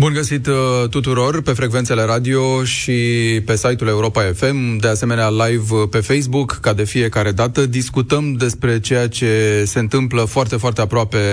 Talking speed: 155 wpm